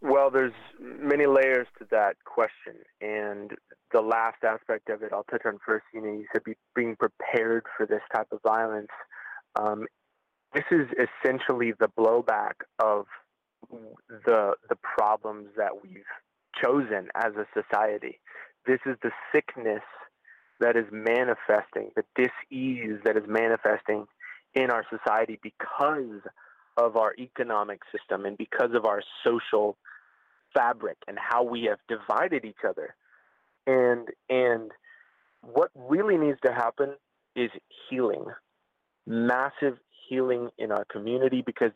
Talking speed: 135 wpm